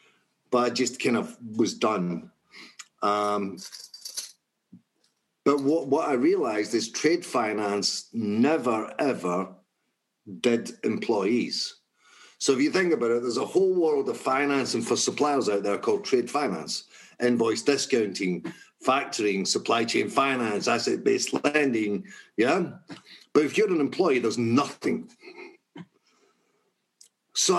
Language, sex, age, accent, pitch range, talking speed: English, male, 50-69, British, 115-140 Hz, 125 wpm